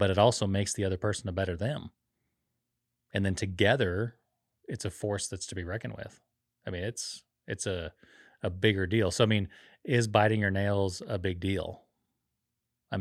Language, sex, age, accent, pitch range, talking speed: English, male, 30-49, American, 95-110 Hz, 185 wpm